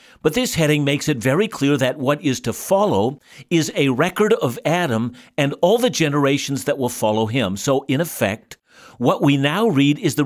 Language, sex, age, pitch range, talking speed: English, male, 60-79, 130-175 Hz, 200 wpm